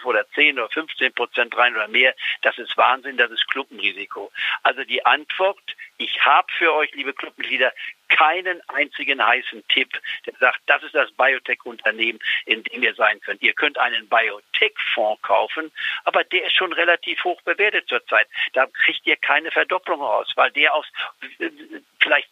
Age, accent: 60-79, German